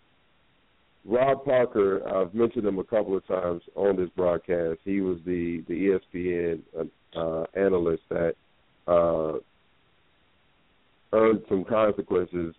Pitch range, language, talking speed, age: 85-105 Hz, English, 115 wpm, 50-69